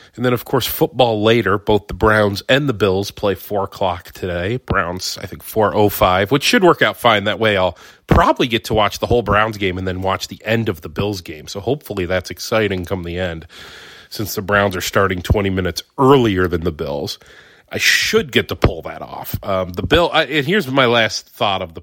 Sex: male